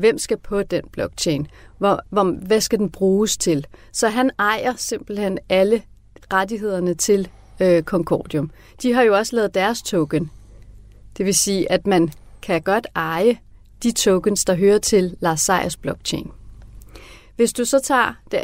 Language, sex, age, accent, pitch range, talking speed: Danish, female, 30-49, native, 175-220 Hz, 145 wpm